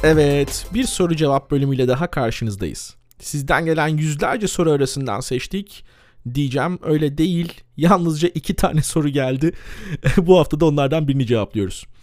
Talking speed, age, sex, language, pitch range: 135 wpm, 40-59, male, Turkish, 140-215 Hz